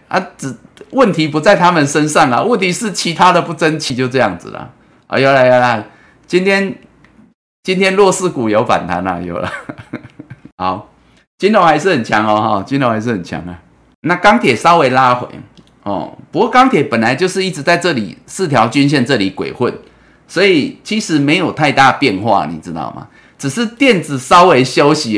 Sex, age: male, 30-49